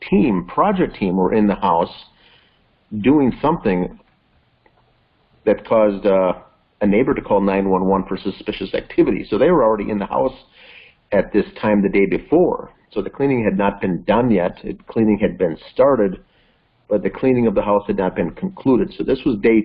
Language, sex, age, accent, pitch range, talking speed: English, male, 50-69, American, 100-130 Hz, 185 wpm